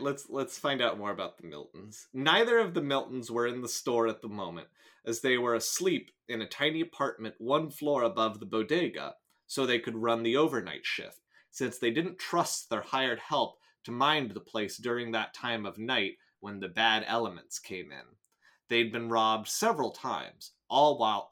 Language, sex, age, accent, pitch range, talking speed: English, male, 30-49, American, 110-140 Hz, 190 wpm